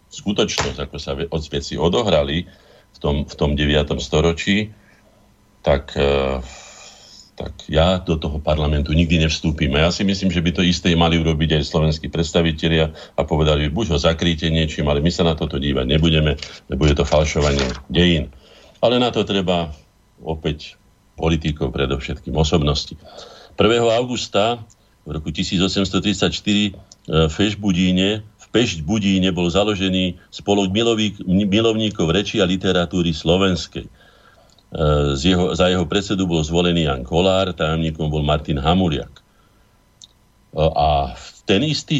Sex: male